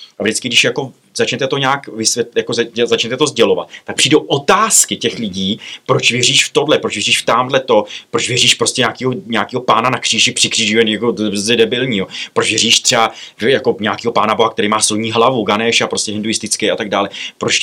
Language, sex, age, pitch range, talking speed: Czech, male, 30-49, 105-120 Hz, 190 wpm